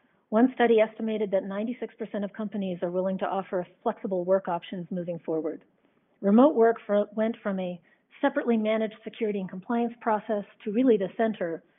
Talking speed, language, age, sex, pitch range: 160 wpm, English, 40-59, female, 190-235 Hz